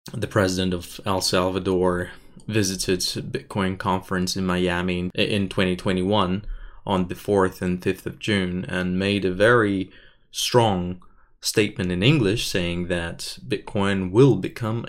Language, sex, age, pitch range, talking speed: English, male, 20-39, 90-105 Hz, 130 wpm